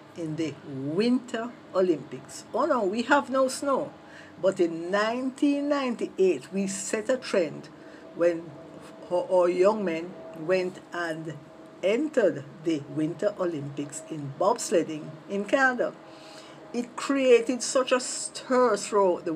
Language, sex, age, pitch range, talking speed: English, female, 50-69, 160-230 Hz, 120 wpm